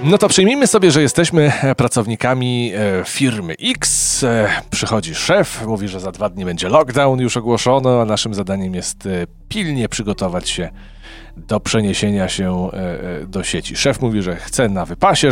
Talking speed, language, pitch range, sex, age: 150 wpm, Polish, 100-120 Hz, male, 40-59